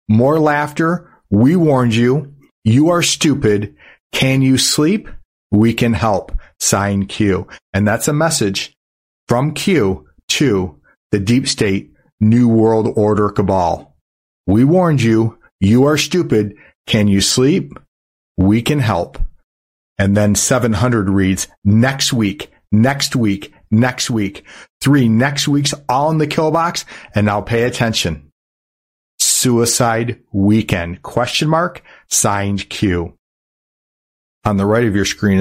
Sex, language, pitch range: male, English, 100-130 Hz